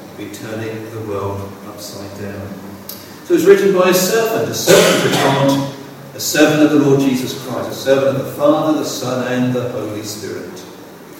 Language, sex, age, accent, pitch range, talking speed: English, male, 50-69, British, 140-210 Hz, 180 wpm